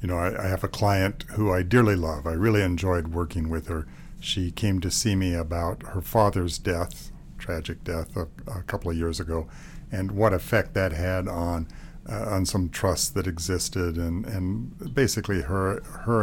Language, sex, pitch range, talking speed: English, male, 85-105 Hz, 190 wpm